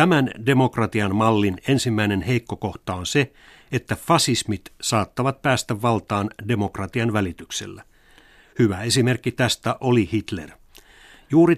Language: Finnish